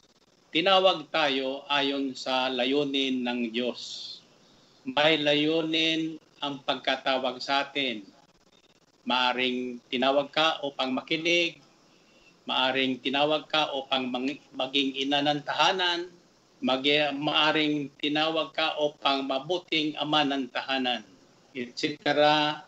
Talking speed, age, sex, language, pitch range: 95 wpm, 50-69, male, Filipino, 130-155 Hz